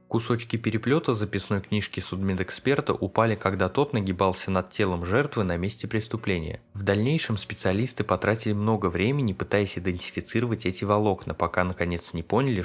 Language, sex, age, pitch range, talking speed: Russian, male, 20-39, 95-115 Hz, 140 wpm